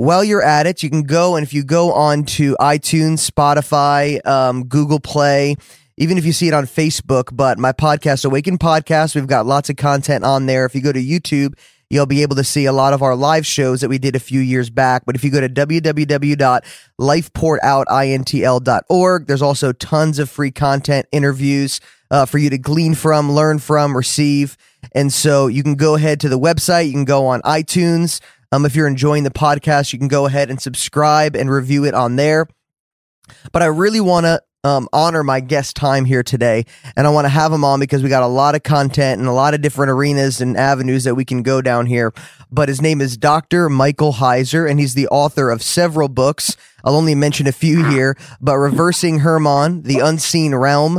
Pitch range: 135-155 Hz